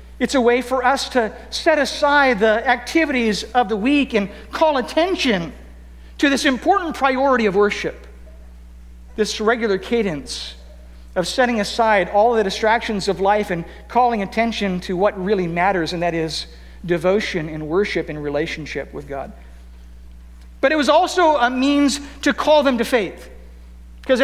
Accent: American